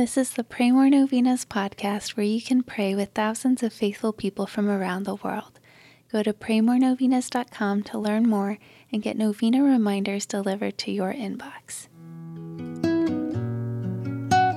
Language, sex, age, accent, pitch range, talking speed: English, female, 20-39, American, 185-225 Hz, 140 wpm